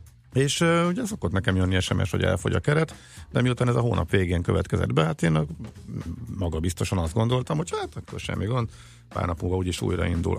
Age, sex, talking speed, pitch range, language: 50-69, male, 195 wpm, 90-110 Hz, Hungarian